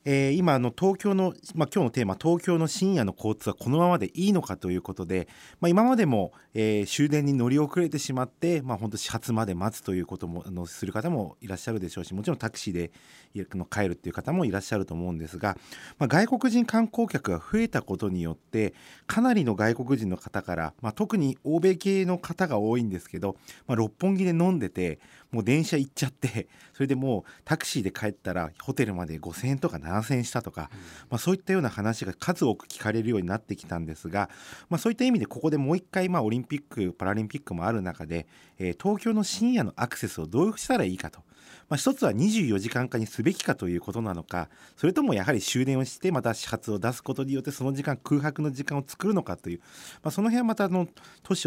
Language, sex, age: Japanese, male, 40-59